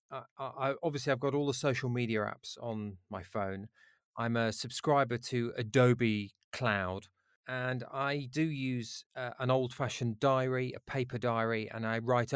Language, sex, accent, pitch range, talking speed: English, male, British, 110-130 Hz, 165 wpm